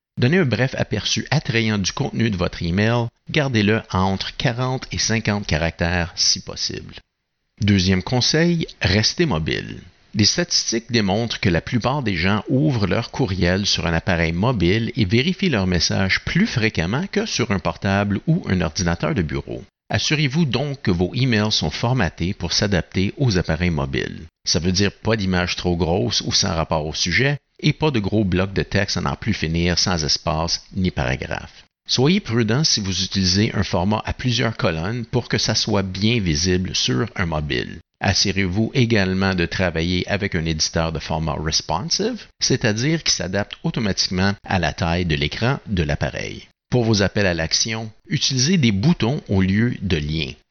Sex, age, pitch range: male, 60-79, 90-120 Hz